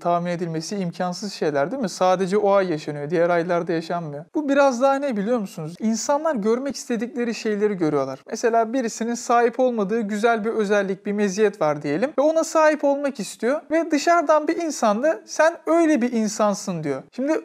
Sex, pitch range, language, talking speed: male, 195-270 Hz, Turkish, 170 wpm